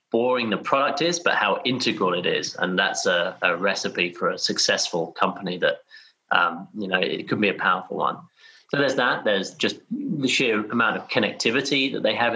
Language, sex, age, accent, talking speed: English, male, 30-49, British, 200 wpm